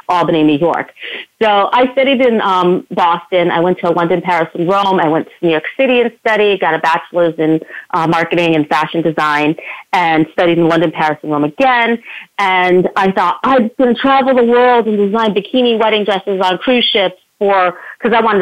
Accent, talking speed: American, 200 wpm